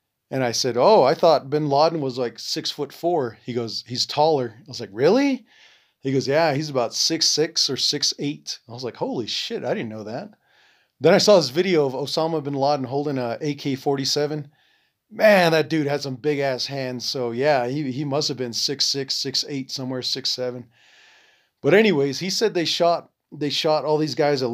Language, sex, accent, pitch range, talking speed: English, male, American, 125-155 Hz, 210 wpm